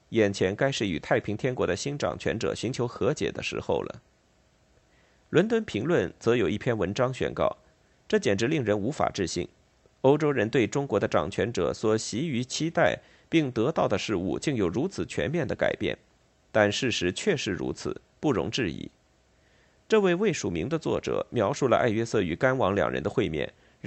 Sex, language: male, Chinese